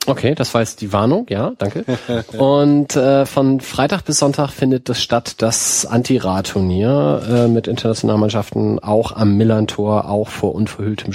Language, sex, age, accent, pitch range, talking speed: German, male, 40-59, German, 105-130 Hz, 155 wpm